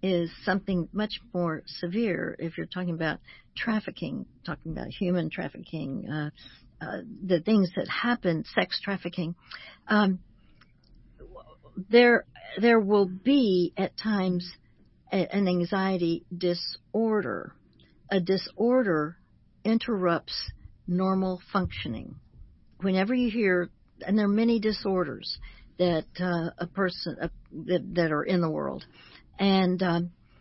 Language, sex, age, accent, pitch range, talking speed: English, female, 60-79, American, 165-200 Hz, 110 wpm